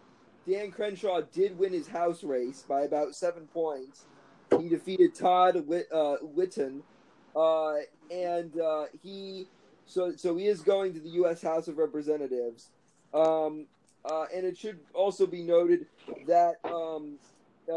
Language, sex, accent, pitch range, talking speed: English, male, American, 155-195 Hz, 140 wpm